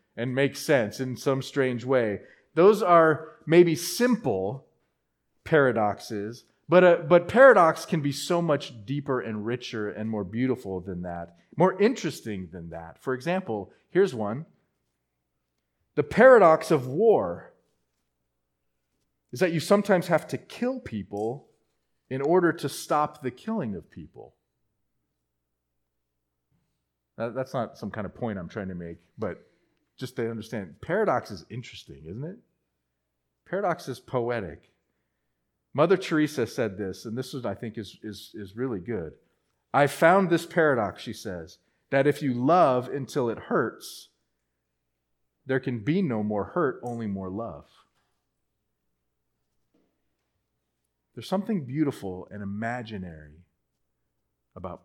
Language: English